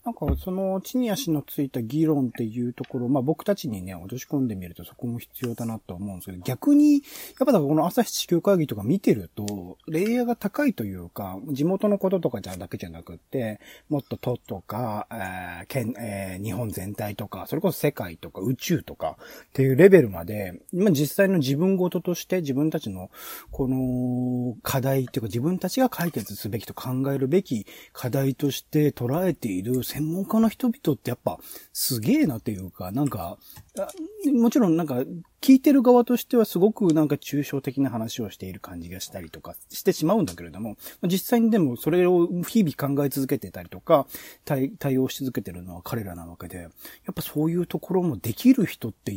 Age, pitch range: 40-59, 105-175 Hz